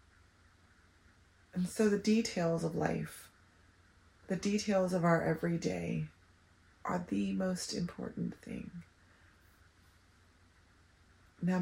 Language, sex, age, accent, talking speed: English, female, 30-49, American, 90 wpm